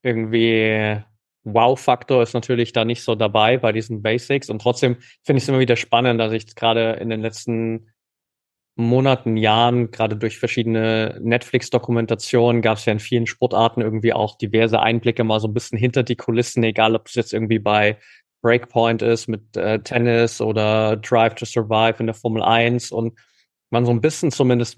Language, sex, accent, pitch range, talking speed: German, male, German, 115-125 Hz, 175 wpm